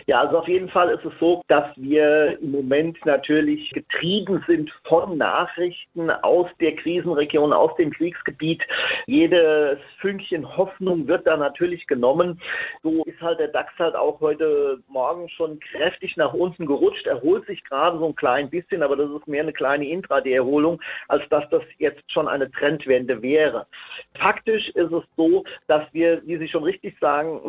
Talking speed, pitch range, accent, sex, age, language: 170 wpm, 150-205 Hz, German, male, 40-59, German